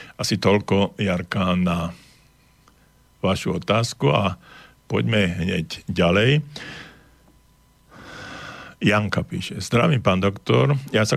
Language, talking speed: Slovak, 90 wpm